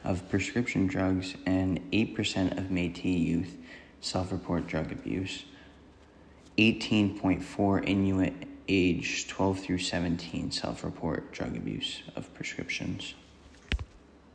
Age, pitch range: 20-39, 90-100 Hz